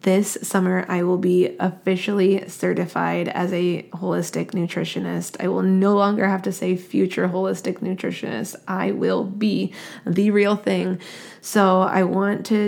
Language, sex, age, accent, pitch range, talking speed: English, female, 20-39, American, 180-200 Hz, 145 wpm